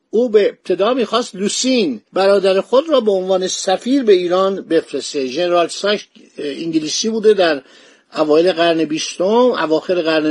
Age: 50-69